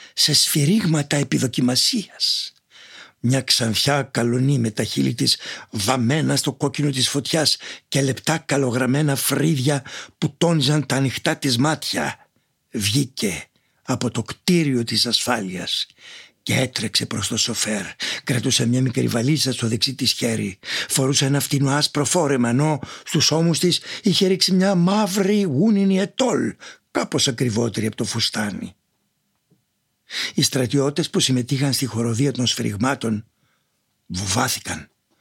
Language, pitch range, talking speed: Greek, 115-145 Hz, 125 wpm